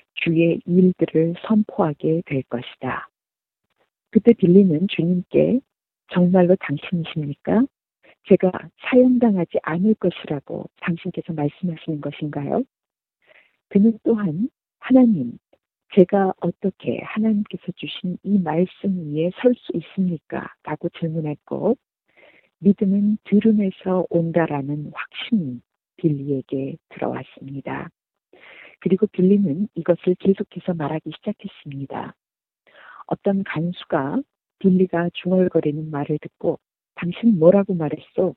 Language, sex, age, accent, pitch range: Korean, female, 40-59, native, 155-200 Hz